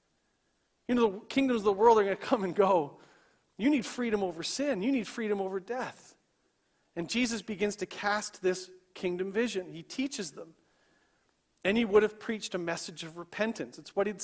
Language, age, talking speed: English, 40-59, 195 wpm